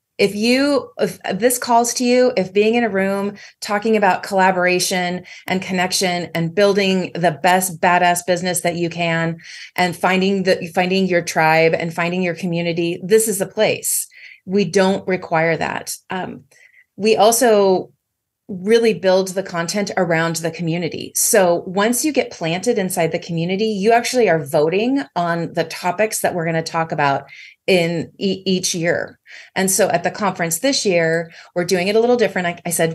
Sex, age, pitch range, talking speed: female, 30-49, 170-205 Hz, 175 wpm